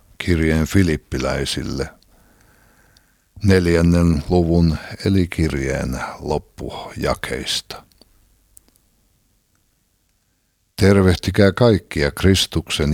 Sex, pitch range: male, 80-100 Hz